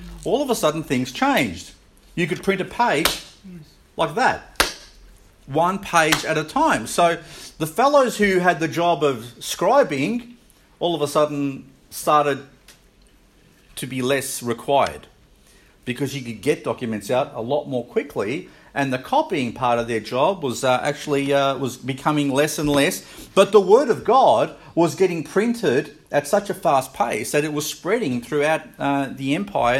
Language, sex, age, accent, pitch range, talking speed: English, male, 40-59, Australian, 135-180 Hz, 165 wpm